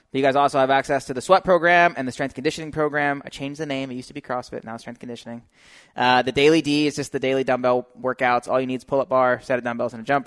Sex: male